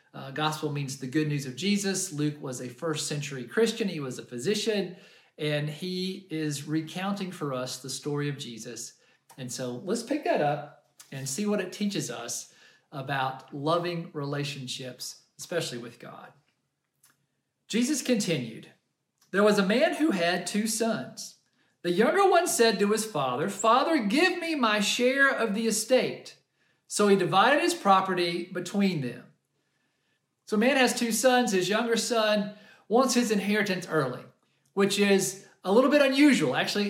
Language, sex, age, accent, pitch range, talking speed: English, male, 40-59, American, 155-215 Hz, 160 wpm